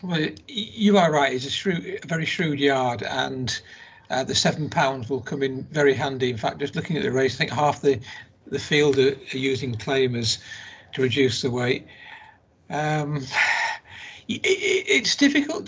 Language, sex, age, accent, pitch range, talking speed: English, male, 50-69, British, 150-200 Hz, 170 wpm